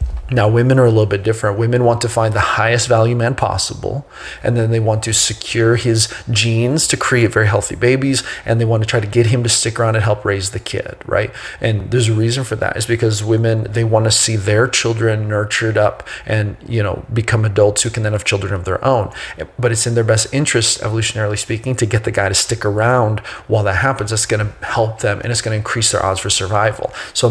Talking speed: 240 wpm